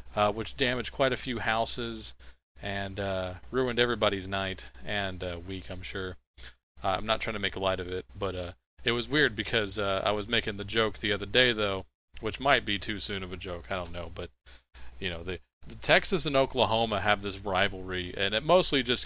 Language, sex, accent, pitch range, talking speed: English, male, American, 90-110 Hz, 215 wpm